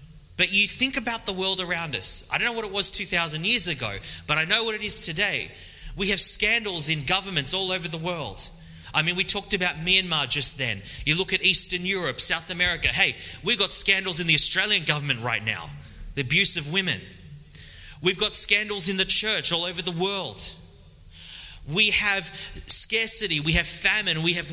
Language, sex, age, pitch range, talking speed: English, male, 30-49, 135-200 Hz, 195 wpm